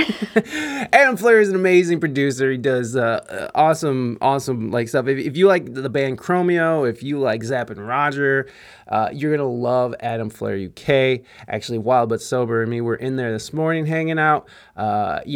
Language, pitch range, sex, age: English, 110-160 Hz, male, 20-39